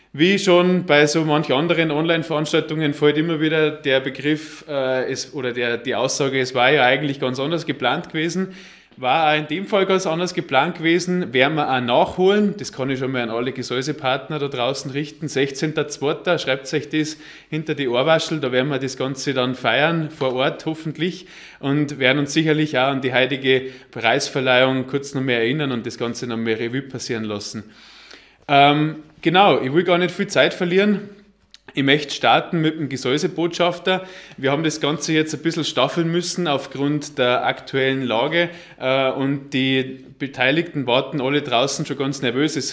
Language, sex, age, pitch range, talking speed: German, male, 20-39, 130-155 Hz, 175 wpm